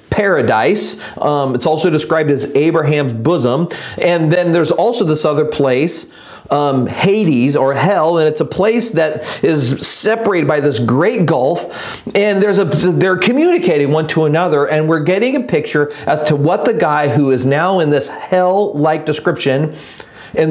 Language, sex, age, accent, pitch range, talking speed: English, male, 40-59, American, 145-190 Hz, 165 wpm